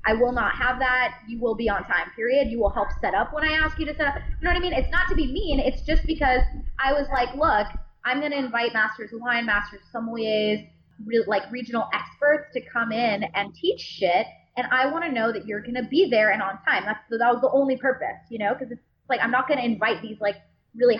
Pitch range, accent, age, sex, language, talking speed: 210-260 Hz, American, 20-39, female, English, 260 wpm